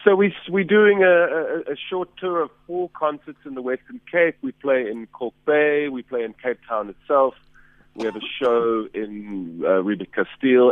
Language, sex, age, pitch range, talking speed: English, male, 30-49, 105-155 Hz, 185 wpm